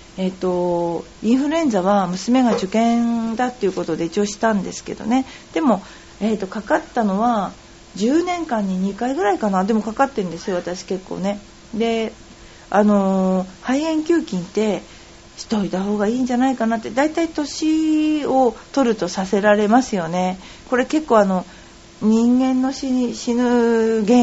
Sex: female